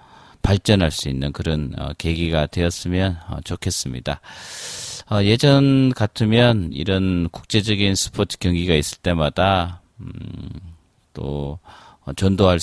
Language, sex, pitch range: Korean, male, 80-100 Hz